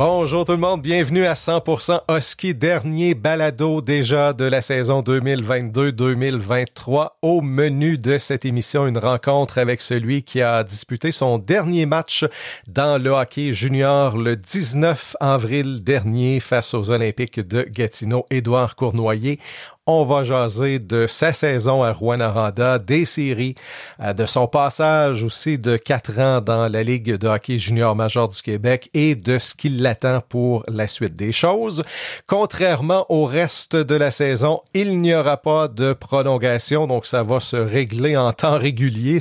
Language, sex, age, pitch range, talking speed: French, male, 40-59, 120-150 Hz, 150 wpm